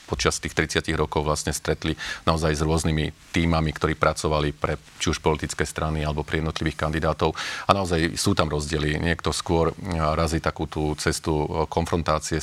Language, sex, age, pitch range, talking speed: Slovak, male, 40-59, 75-80 Hz, 160 wpm